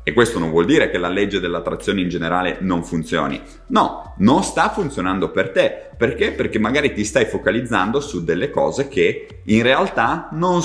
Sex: male